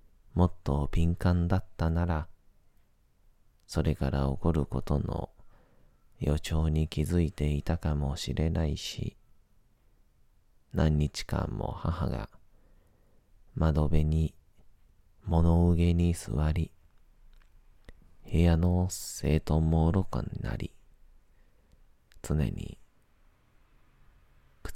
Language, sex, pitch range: Japanese, male, 75-90 Hz